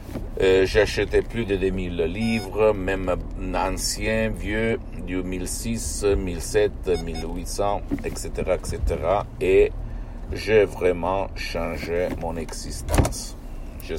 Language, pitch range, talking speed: Italian, 85-105 Hz, 95 wpm